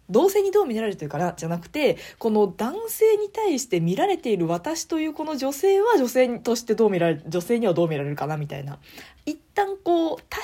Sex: female